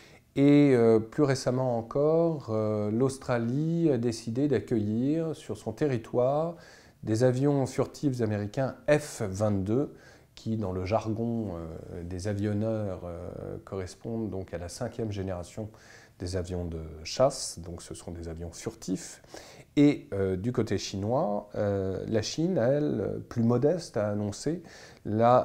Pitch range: 100-135 Hz